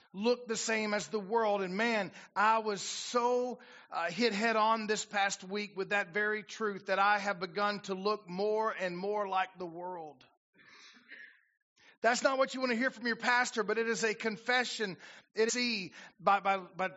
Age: 40-59